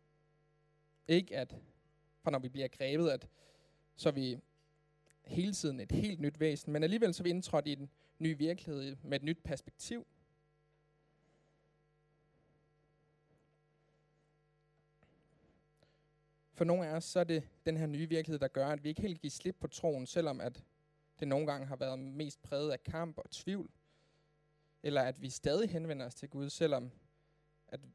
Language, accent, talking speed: Danish, native, 160 wpm